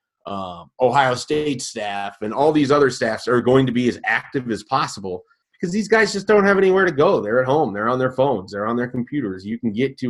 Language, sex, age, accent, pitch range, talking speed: English, male, 30-49, American, 110-140 Hz, 245 wpm